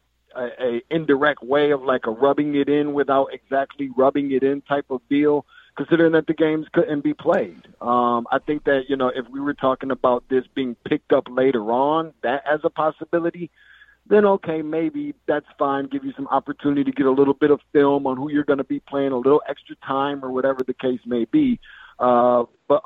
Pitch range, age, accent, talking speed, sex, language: 130-155 Hz, 50-69, American, 215 wpm, male, English